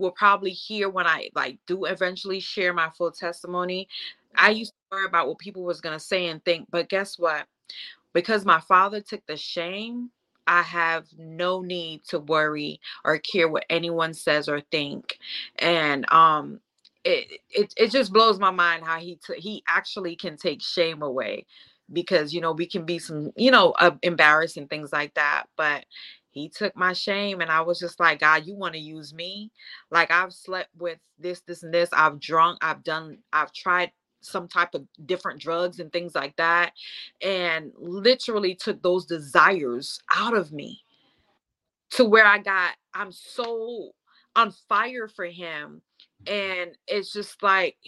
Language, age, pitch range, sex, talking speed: English, 20-39, 165-200 Hz, female, 175 wpm